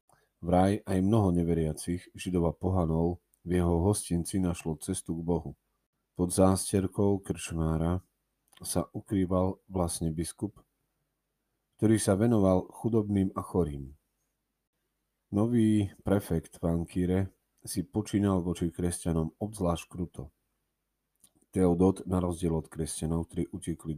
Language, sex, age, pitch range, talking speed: Slovak, male, 40-59, 85-95 Hz, 110 wpm